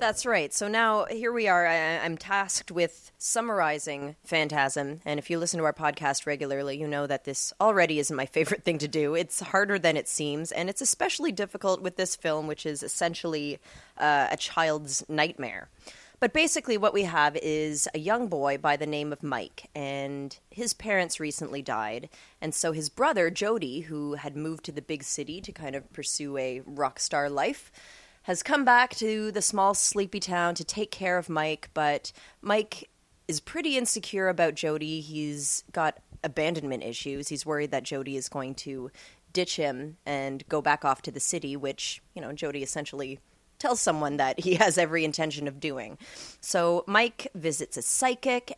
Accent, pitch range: American, 145-185 Hz